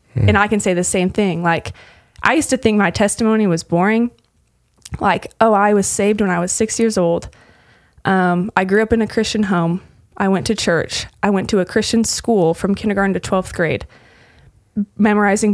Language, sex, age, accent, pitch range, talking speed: English, female, 20-39, American, 185-220 Hz, 195 wpm